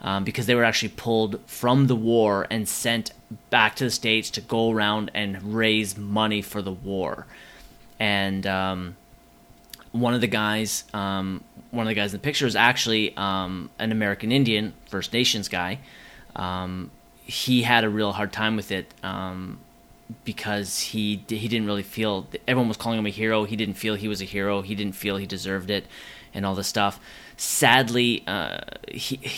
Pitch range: 100-115 Hz